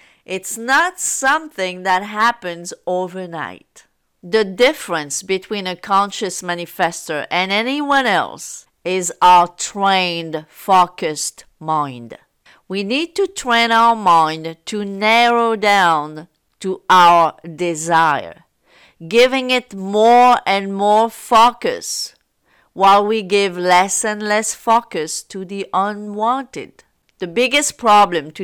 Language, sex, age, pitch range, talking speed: English, female, 50-69, 175-230 Hz, 110 wpm